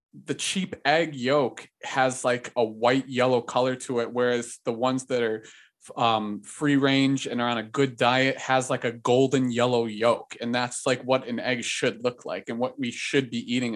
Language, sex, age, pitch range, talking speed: English, male, 20-39, 115-130 Hz, 205 wpm